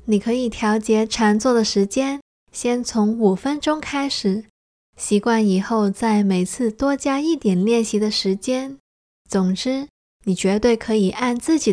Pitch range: 210-245 Hz